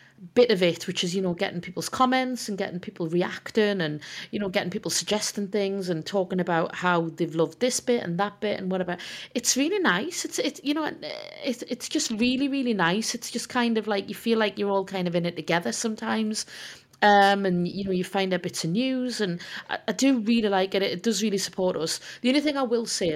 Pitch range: 175-220 Hz